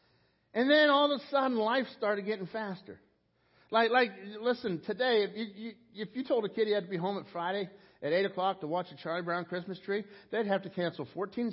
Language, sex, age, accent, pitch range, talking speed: English, male, 50-69, American, 155-220 Hz, 230 wpm